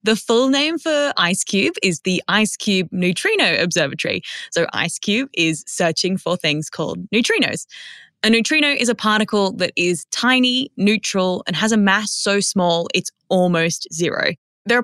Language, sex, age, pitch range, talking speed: English, female, 20-39, 175-225 Hz, 150 wpm